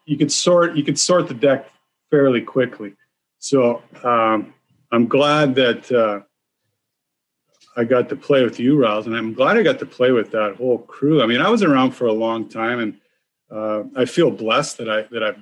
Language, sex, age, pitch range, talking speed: English, male, 40-59, 110-140 Hz, 200 wpm